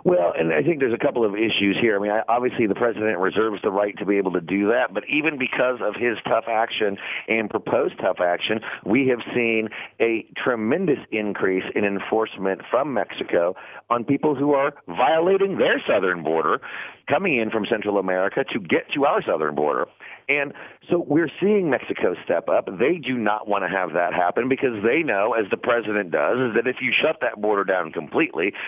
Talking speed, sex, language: 200 wpm, male, English